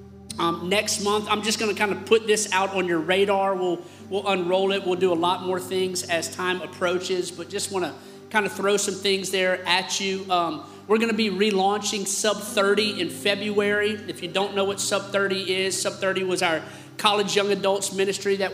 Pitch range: 180-200 Hz